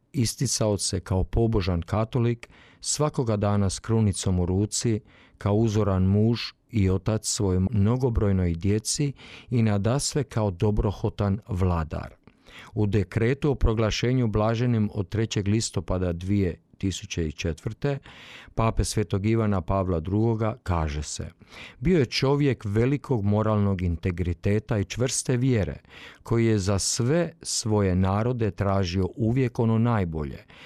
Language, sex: Croatian, male